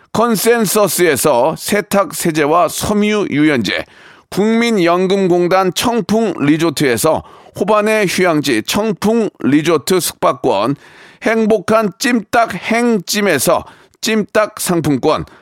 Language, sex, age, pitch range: Korean, male, 40-59, 180-225 Hz